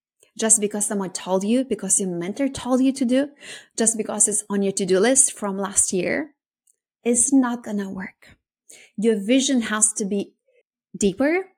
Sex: female